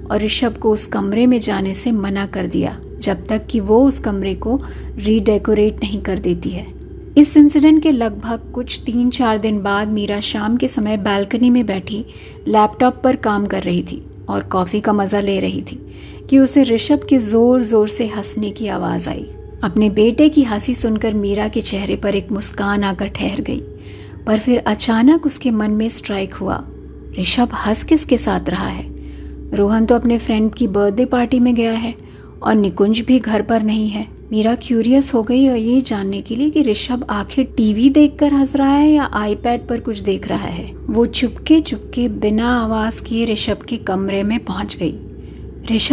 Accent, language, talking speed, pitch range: Indian, English, 180 wpm, 205-245 Hz